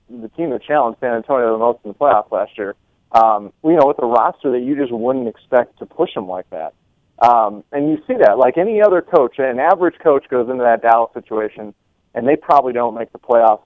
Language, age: English, 30-49